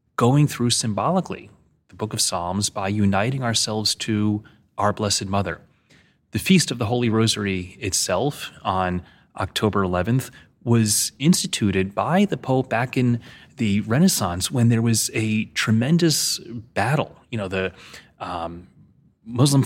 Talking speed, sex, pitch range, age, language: 135 wpm, male, 105-130 Hz, 30-49, English